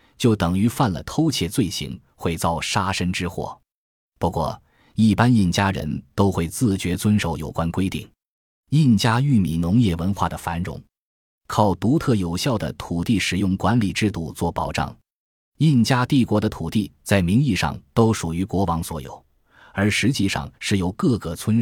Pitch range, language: 85-115 Hz, Chinese